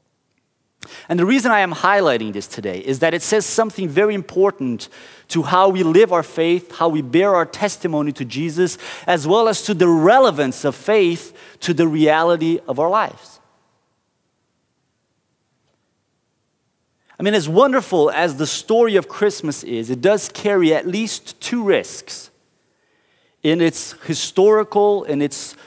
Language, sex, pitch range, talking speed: English, male, 135-190 Hz, 150 wpm